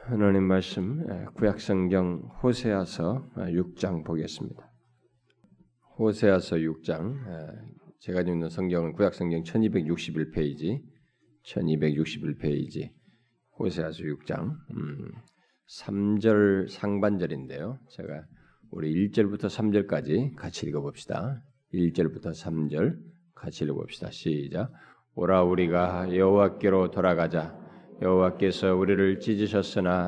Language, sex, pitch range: Korean, male, 85-100 Hz